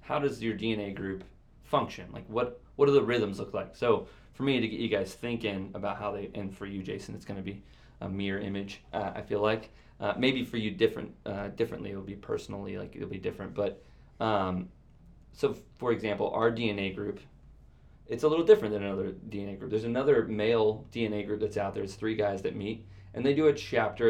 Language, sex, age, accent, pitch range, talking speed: English, male, 20-39, American, 100-115 Hz, 220 wpm